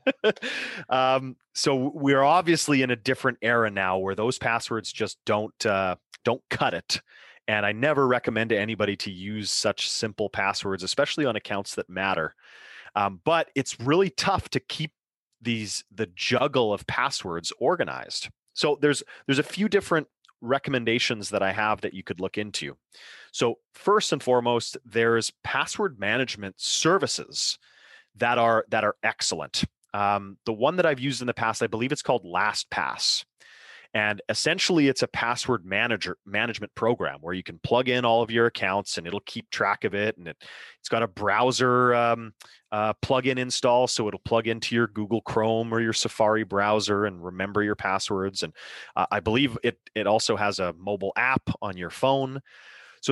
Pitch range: 105-130 Hz